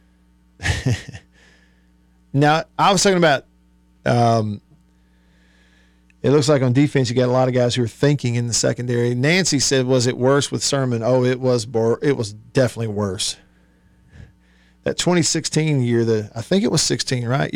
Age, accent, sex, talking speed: 40-59, American, male, 160 wpm